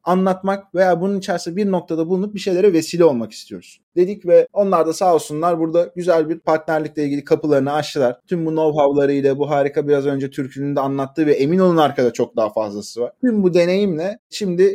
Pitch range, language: 130-175 Hz, Turkish